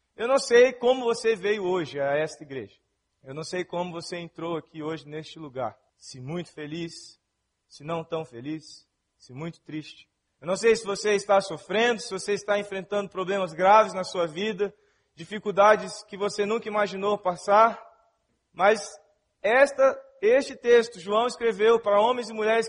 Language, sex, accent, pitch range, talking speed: Portuguese, male, Brazilian, 200-255 Hz, 160 wpm